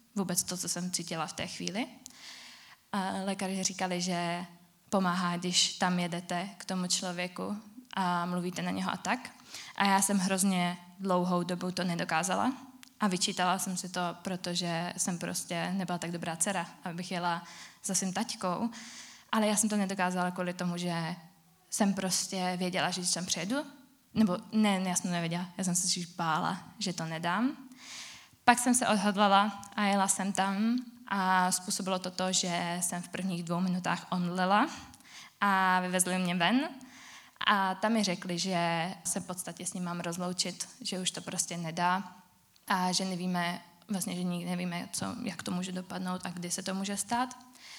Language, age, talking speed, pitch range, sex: Czech, 20-39, 170 wpm, 175-205 Hz, female